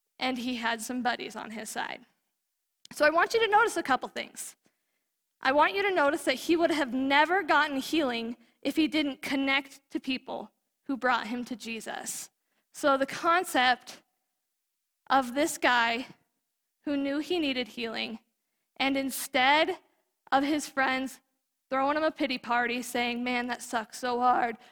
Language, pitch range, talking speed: English, 240-295 Hz, 165 wpm